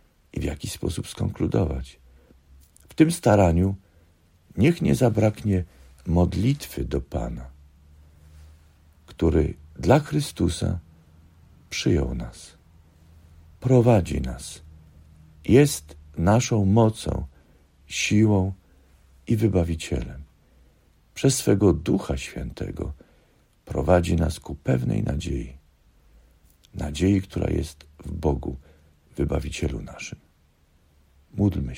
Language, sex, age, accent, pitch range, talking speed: Polish, male, 50-69, native, 75-95 Hz, 85 wpm